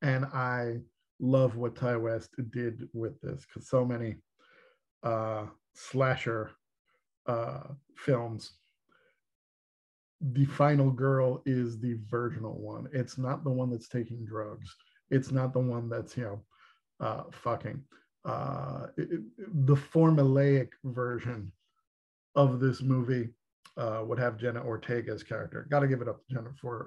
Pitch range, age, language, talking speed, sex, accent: 115-135 Hz, 50-69, English, 130 wpm, male, American